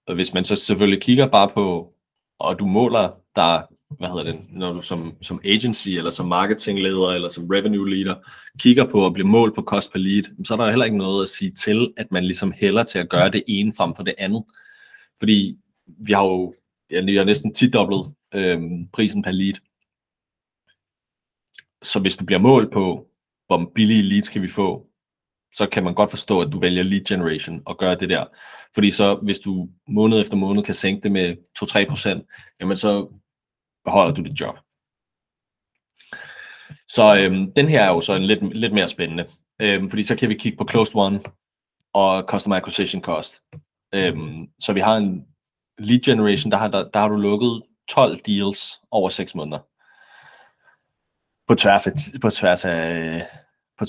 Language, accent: Danish, native